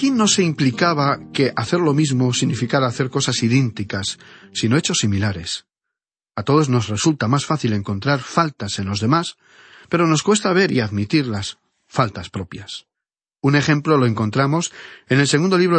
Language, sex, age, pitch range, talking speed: Spanish, male, 40-59, 115-160 Hz, 160 wpm